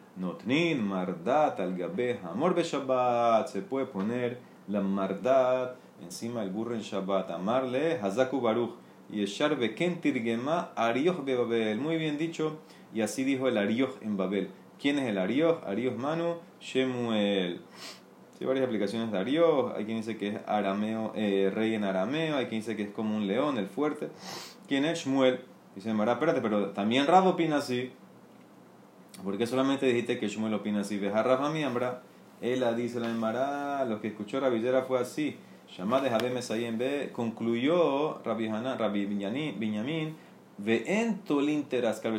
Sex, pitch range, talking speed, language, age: male, 105-135 Hz, 160 wpm, Spanish, 30-49